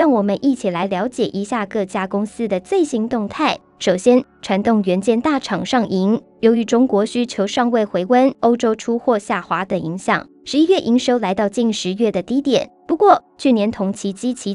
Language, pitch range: Chinese, 205-260 Hz